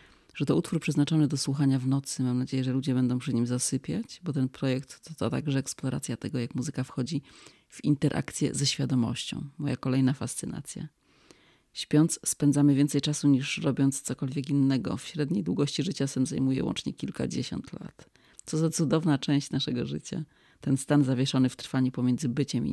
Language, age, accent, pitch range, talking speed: Polish, 30-49, native, 130-145 Hz, 170 wpm